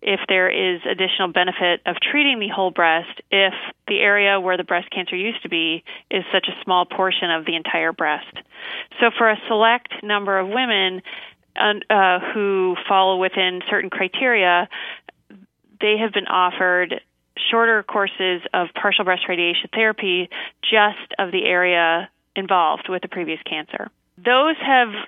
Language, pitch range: English, 180-210 Hz